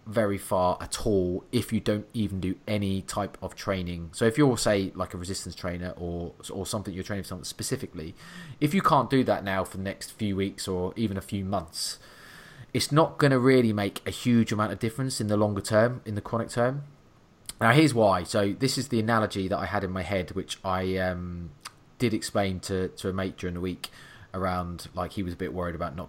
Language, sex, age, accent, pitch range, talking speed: English, male, 20-39, British, 90-115 Hz, 225 wpm